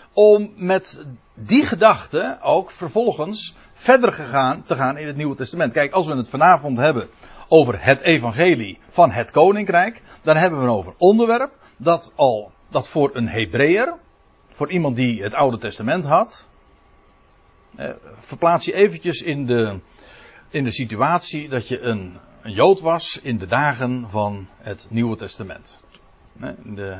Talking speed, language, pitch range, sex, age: 150 wpm, Dutch, 110-175 Hz, male, 60-79